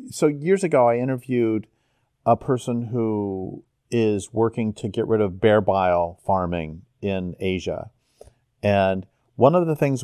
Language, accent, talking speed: English, American, 145 wpm